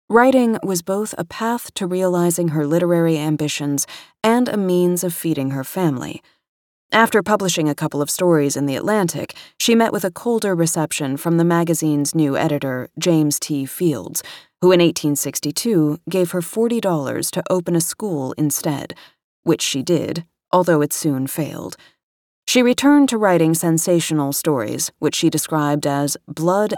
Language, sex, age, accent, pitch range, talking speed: English, female, 30-49, American, 150-185 Hz, 155 wpm